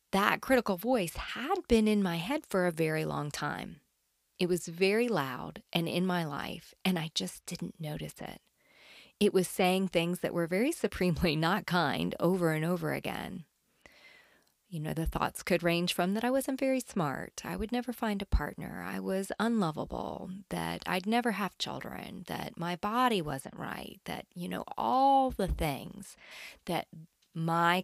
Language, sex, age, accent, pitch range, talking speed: English, female, 30-49, American, 155-225 Hz, 170 wpm